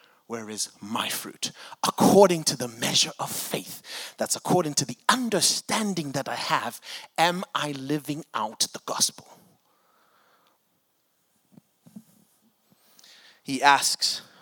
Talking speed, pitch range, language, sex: 110 wpm, 135-190 Hz, English, male